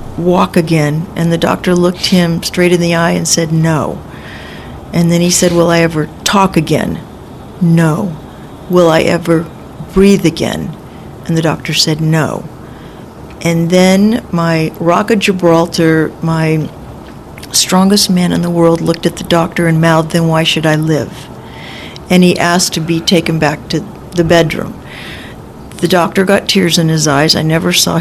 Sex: female